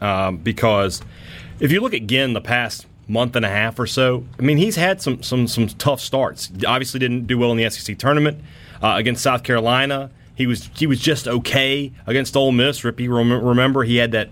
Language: English